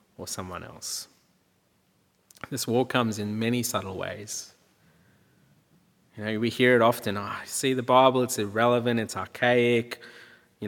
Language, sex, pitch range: English, male, 115-145 Hz